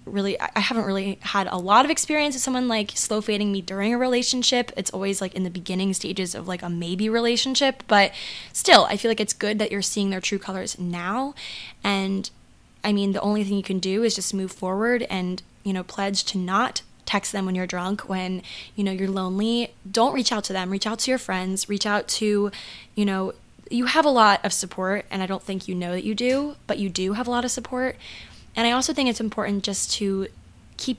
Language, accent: English, American